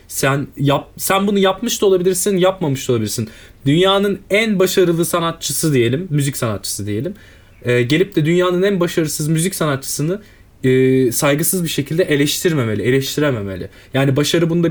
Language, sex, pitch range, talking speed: Turkish, male, 130-185 Hz, 145 wpm